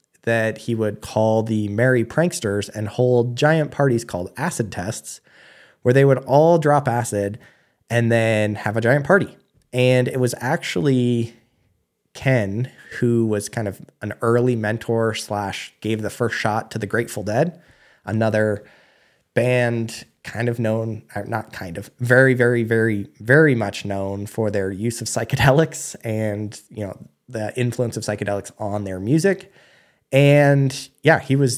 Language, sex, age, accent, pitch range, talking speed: English, male, 20-39, American, 105-125 Hz, 150 wpm